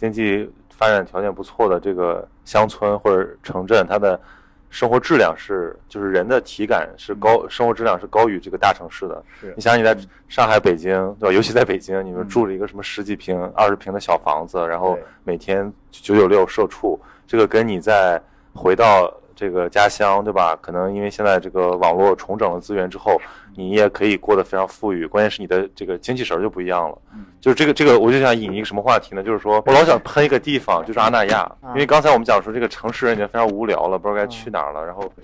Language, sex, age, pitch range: Chinese, male, 20-39, 95-115 Hz